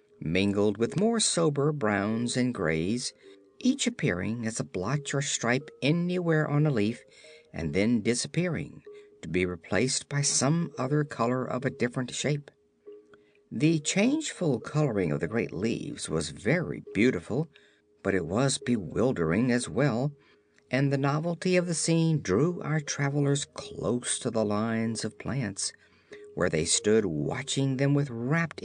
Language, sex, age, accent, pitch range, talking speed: English, male, 50-69, American, 115-180 Hz, 145 wpm